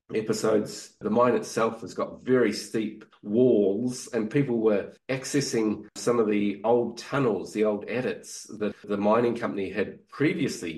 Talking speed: 150 wpm